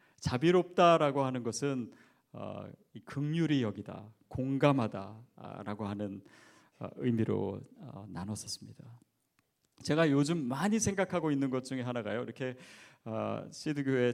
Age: 40-59